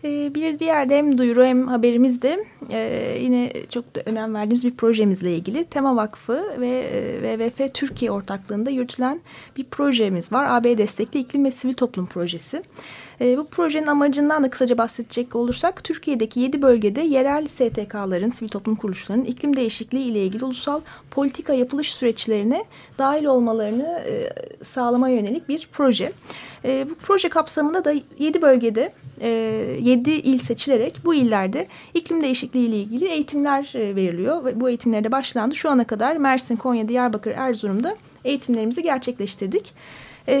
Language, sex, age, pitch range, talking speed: Turkish, female, 30-49, 225-285 Hz, 140 wpm